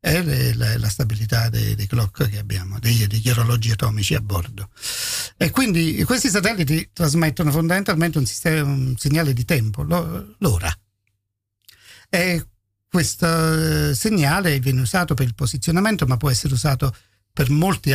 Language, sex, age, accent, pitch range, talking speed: English, male, 50-69, Italian, 120-155 Hz, 135 wpm